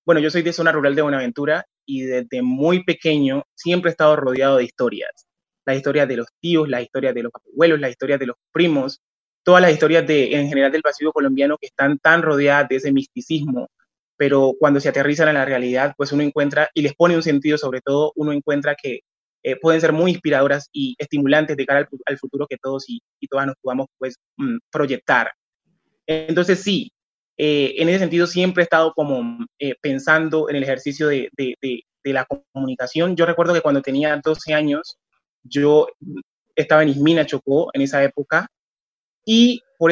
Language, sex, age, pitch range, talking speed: Spanish, male, 20-39, 140-170 Hz, 195 wpm